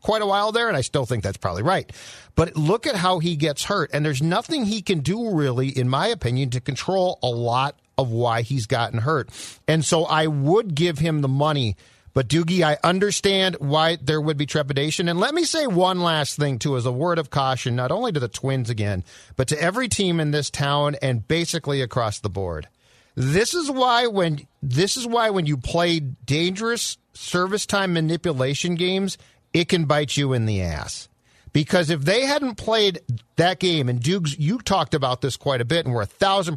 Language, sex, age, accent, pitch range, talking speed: English, male, 40-59, American, 130-195 Hz, 210 wpm